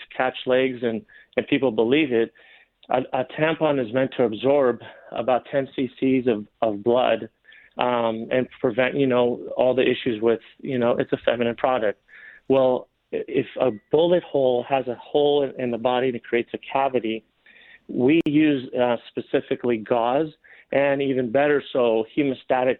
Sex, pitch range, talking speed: male, 120-145 Hz, 160 wpm